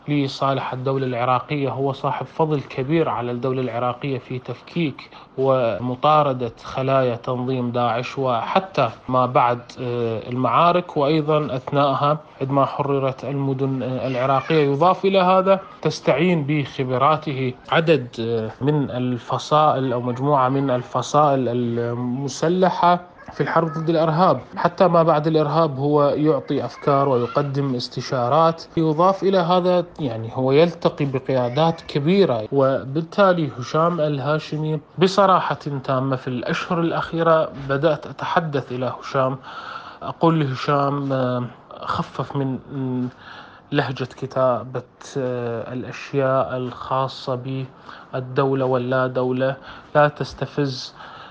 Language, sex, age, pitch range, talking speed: Arabic, male, 20-39, 130-155 Hz, 100 wpm